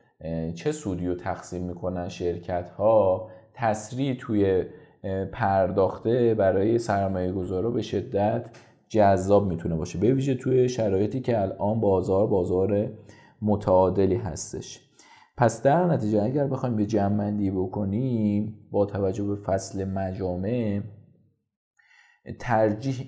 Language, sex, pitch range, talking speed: Persian, male, 90-110 Hz, 110 wpm